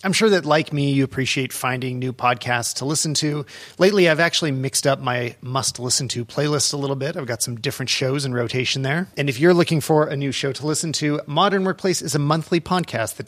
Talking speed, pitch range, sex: 225 wpm, 125-155 Hz, male